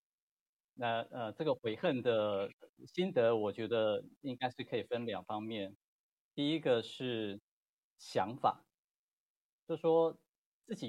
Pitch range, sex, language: 105-130 Hz, male, Chinese